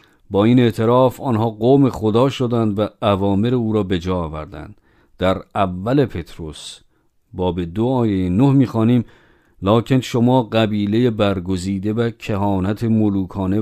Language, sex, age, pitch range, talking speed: Persian, male, 50-69, 100-120 Hz, 130 wpm